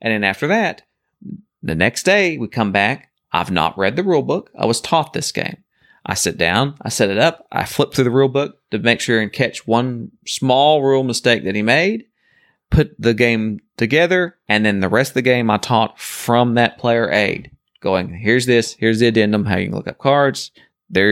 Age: 30-49